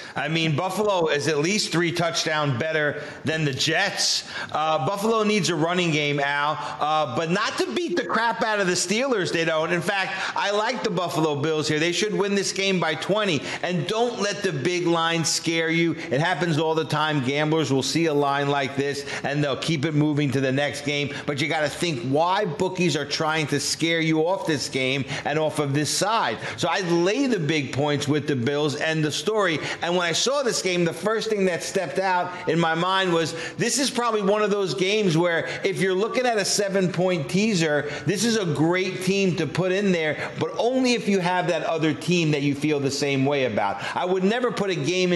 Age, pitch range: 40-59, 150-185 Hz